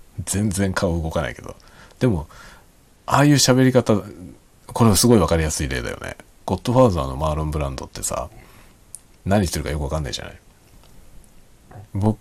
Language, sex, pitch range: Japanese, male, 75-110 Hz